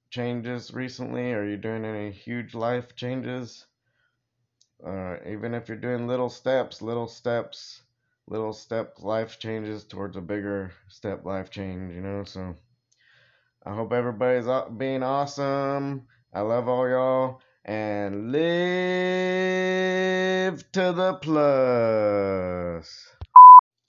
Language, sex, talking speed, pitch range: English, male, 115 wpm, 100-125 Hz